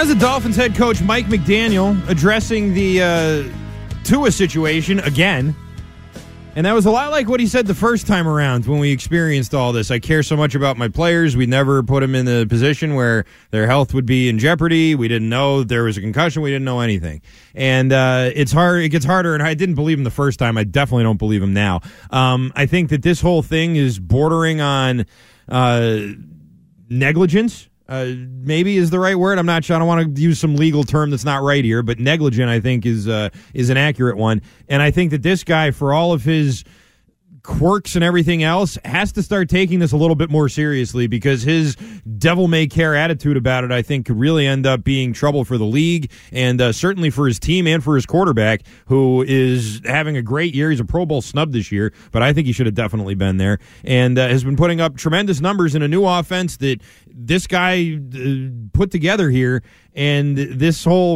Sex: male